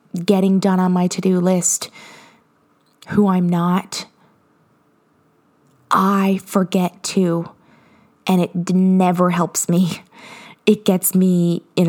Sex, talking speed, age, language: female, 105 wpm, 20-39, English